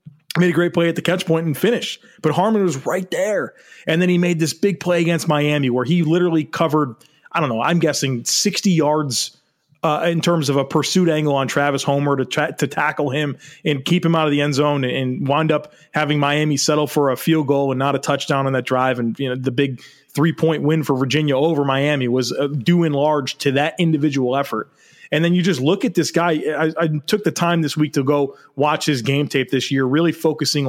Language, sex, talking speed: English, male, 235 wpm